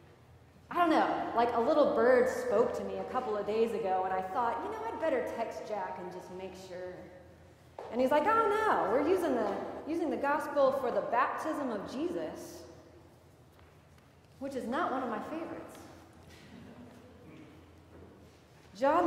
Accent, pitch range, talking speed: American, 230-320 Hz, 165 wpm